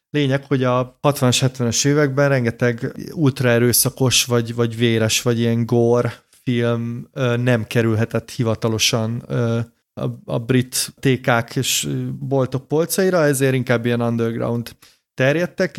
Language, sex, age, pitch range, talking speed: Hungarian, male, 30-49, 115-130 Hz, 110 wpm